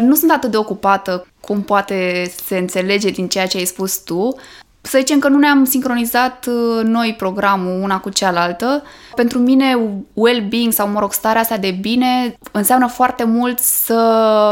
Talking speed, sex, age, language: 160 wpm, female, 20-39, Romanian